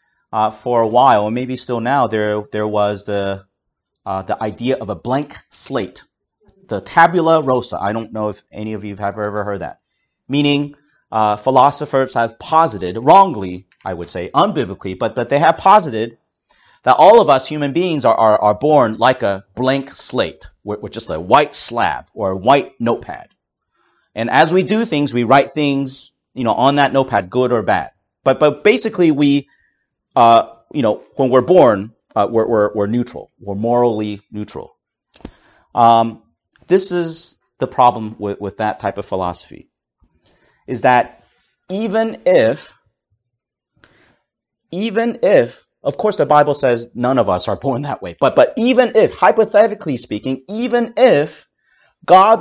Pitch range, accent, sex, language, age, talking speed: 105-160 Hz, American, male, English, 40-59, 165 wpm